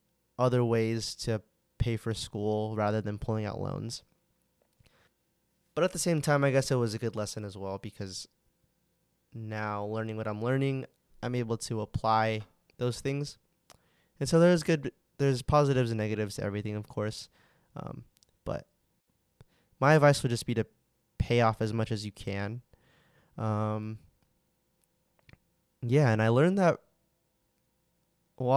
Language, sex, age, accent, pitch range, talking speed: English, male, 20-39, American, 105-130 Hz, 150 wpm